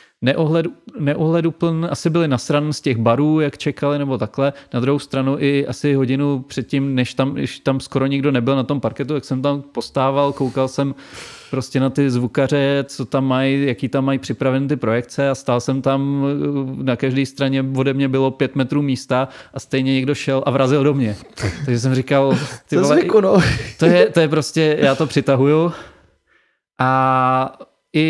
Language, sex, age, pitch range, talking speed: Czech, male, 30-49, 130-145 Hz, 175 wpm